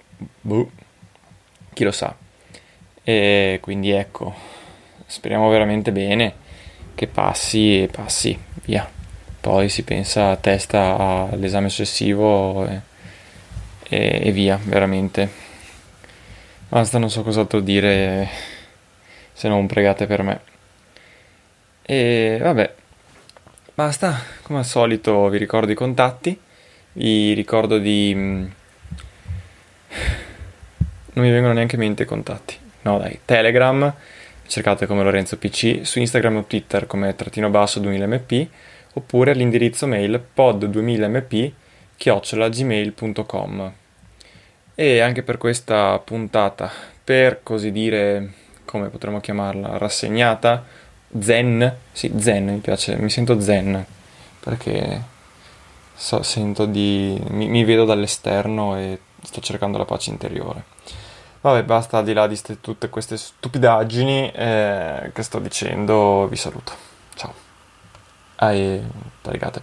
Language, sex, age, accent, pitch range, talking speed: Italian, male, 20-39, native, 100-115 Hz, 110 wpm